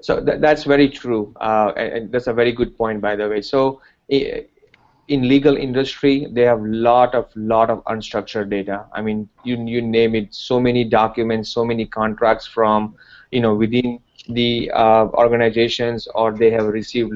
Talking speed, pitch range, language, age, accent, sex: 170 wpm, 110-125 Hz, English, 30-49, Indian, male